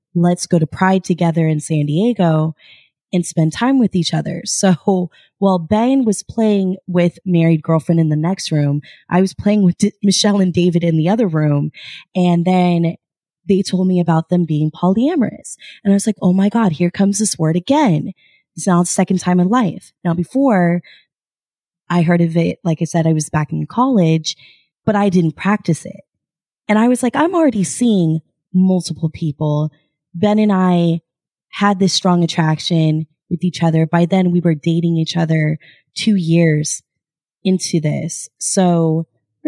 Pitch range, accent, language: 160-195 Hz, American, English